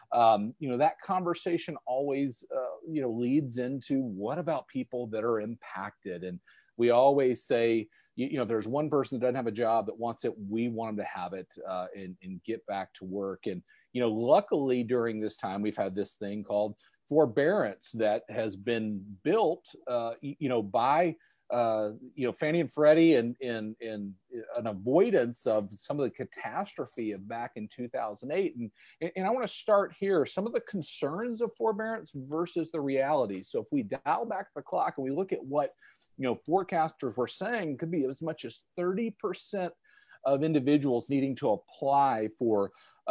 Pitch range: 110-160 Hz